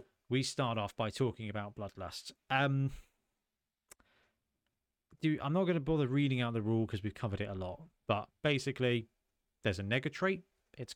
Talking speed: 170 wpm